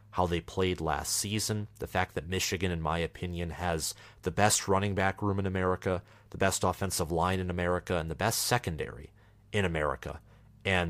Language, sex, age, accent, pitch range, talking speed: English, male, 30-49, American, 90-105 Hz, 180 wpm